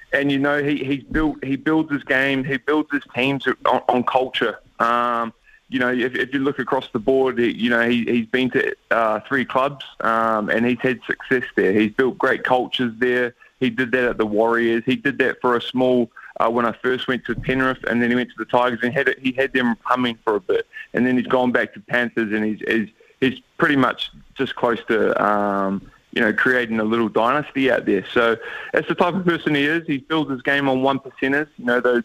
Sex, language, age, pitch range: male, English, 20-39, 115-130 Hz